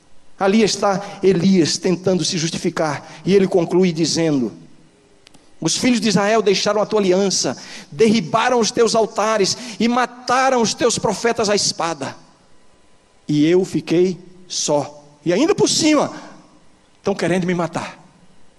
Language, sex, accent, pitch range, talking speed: Portuguese, male, Brazilian, 155-225 Hz, 130 wpm